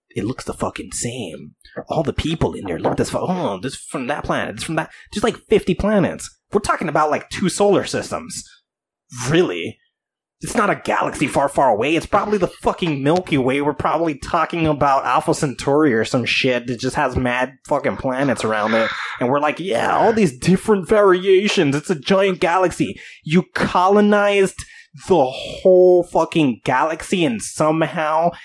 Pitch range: 145-195 Hz